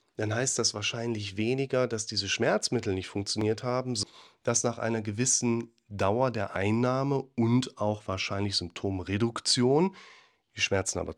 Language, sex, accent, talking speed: German, male, German, 135 wpm